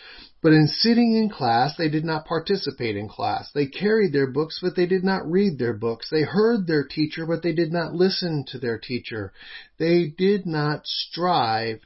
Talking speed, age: 190 wpm, 40-59